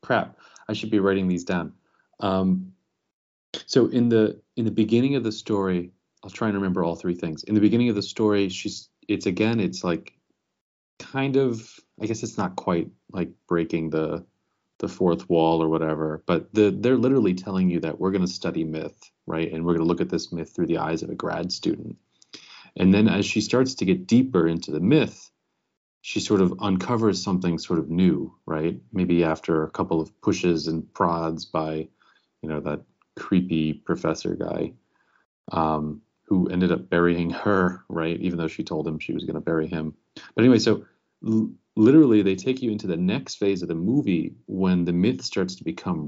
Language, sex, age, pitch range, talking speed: English, male, 30-49, 85-110 Hz, 195 wpm